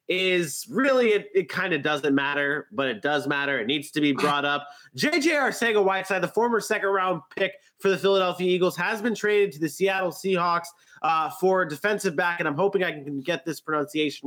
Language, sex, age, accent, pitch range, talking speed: English, male, 30-49, American, 150-190 Hz, 200 wpm